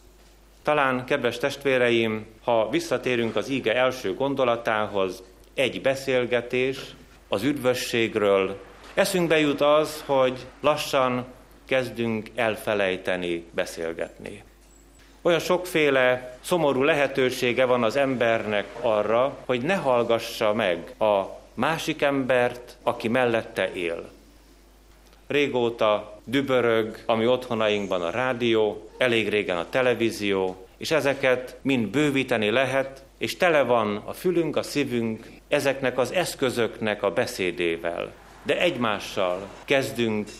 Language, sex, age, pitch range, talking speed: Hungarian, male, 30-49, 105-140 Hz, 100 wpm